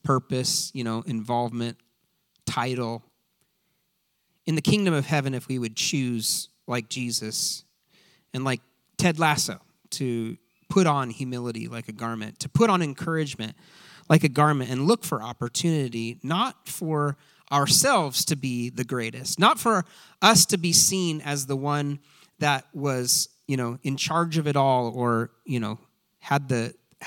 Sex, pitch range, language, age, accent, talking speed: male, 130-175 Hz, English, 30-49, American, 150 wpm